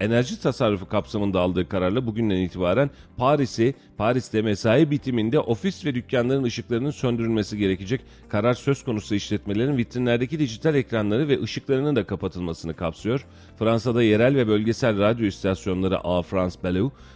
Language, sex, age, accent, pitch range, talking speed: Turkish, male, 40-59, native, 100-130 Hz, 125 wpm